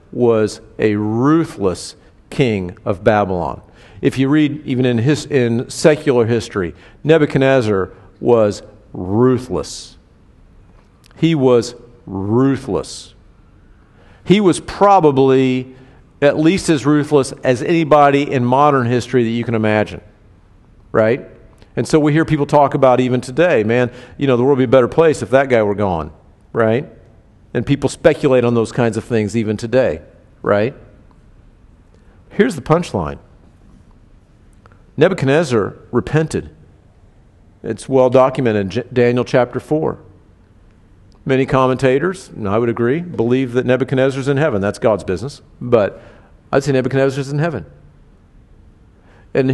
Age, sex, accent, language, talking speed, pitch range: 50-69, male, American, English, 130 wpm, 100-140 Hz